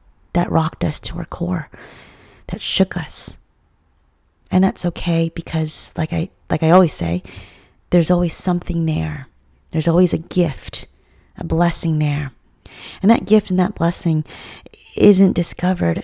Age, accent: 30-49, American